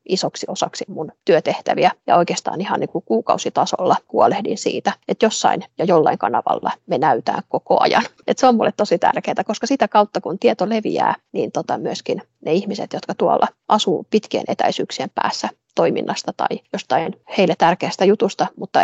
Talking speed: 160 wpm